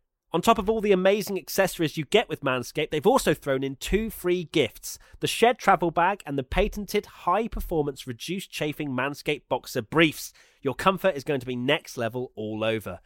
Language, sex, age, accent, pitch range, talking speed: English, male, 30-49, British, 120-185 Hz, 190 wpm